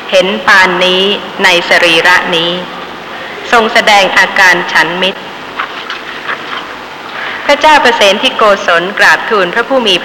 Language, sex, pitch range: Thai, female, 185-250 Hz